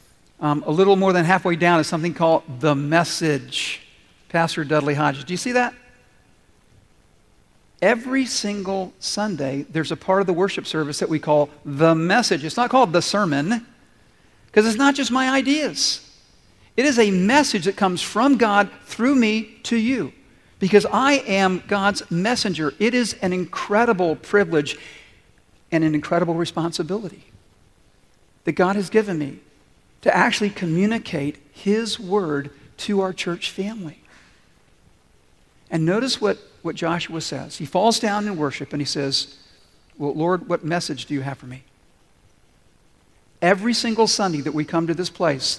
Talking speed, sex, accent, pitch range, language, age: 155 wpm, male, American, 150-205 Hz, English, 50-69